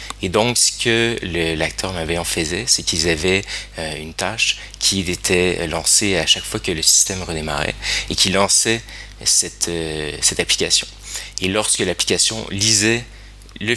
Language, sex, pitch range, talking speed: French, male, 80-100 Hz, 160 wpm